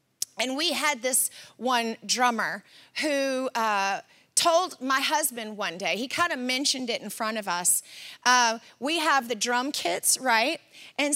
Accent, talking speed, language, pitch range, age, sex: American, 160 wpm, English, 220-300 Hz, 30-49, female